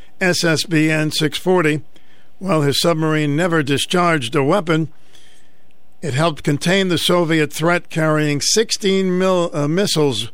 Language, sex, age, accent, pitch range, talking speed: English, male, 50-69, American, 145-165 Hz, 105 wpm